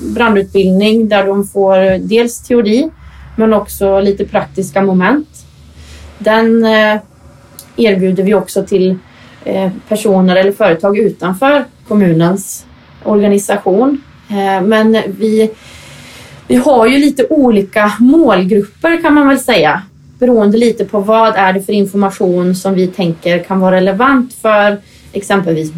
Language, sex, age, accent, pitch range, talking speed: Swedish, female, 20-39, native, 190-220 Hz, 115 wpm